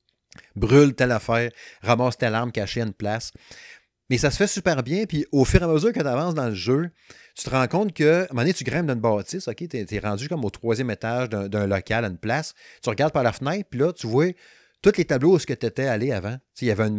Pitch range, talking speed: 110-150 Hz, 275 wpm